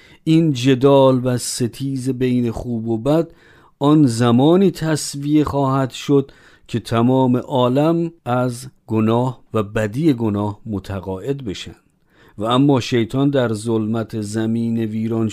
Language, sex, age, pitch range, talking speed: Persian, male, 50-69, 105-140 Hz, 115 wpm